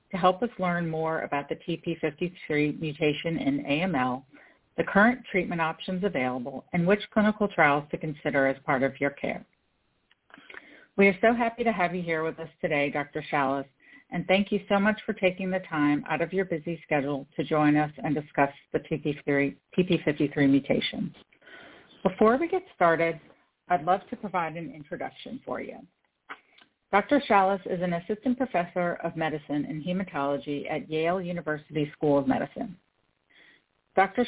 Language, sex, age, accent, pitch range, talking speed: English, female, 50-69, American, 150-195 Hz, 160 wpm